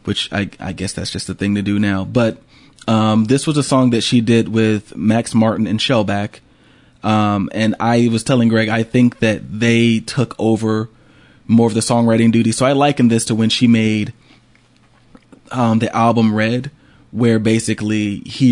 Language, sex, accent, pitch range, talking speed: English, male, American, 105-120 Hz, 180 wpm